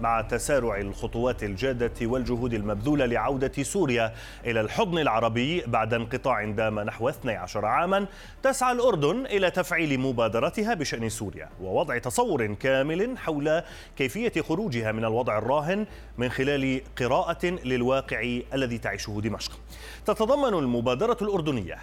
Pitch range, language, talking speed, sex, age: 115-170 Hz, Arabic, 120 wpm, male, 30-49